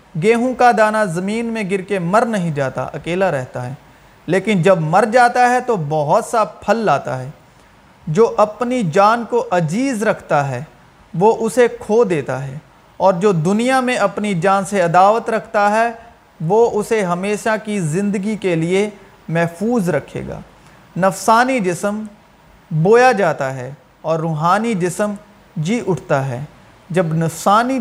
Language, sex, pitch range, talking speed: Urdu, male, 165-220 Hz, 150 wpm